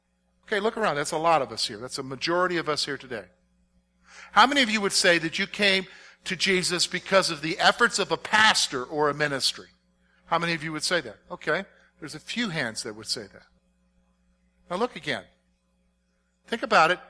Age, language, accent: 50-69, English, American